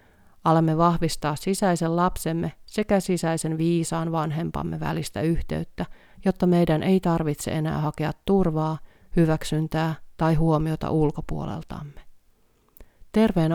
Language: Finnish